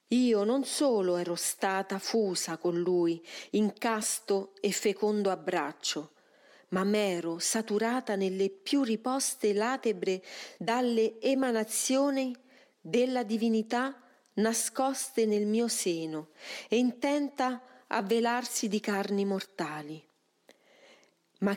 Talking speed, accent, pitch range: 100 wpm, native, 185-240 Hz